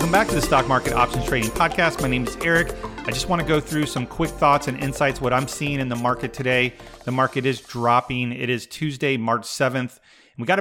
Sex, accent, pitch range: male, American, 115-140 Hz